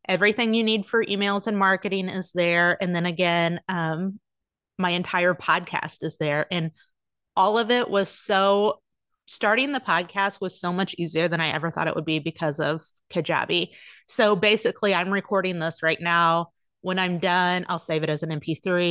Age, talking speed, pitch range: 30-49, 180 wpm, 165-200 Hz